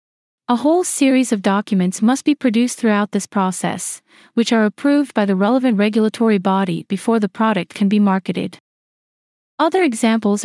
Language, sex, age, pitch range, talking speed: English, female, 30-49, 200-240 Hz, 155 wpm